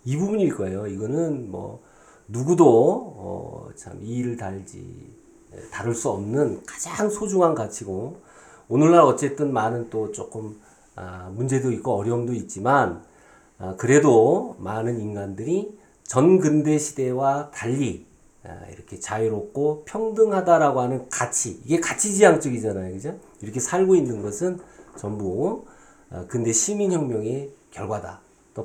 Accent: native